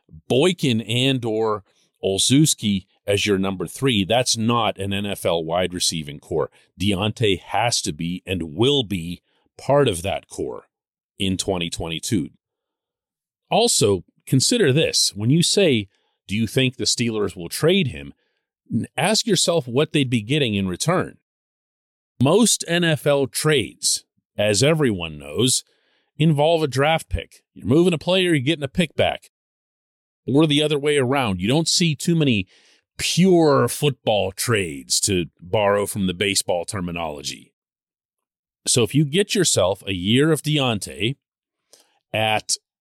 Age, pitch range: 40-59, 100-155 Hz